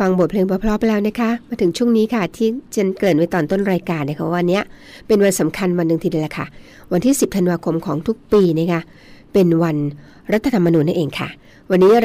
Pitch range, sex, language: 165-215 Hz, female, Thai